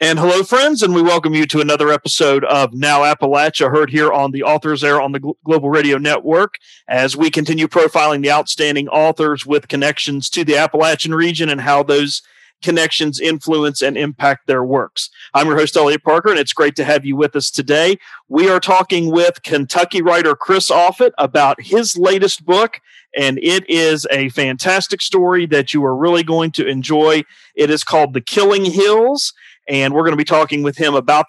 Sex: male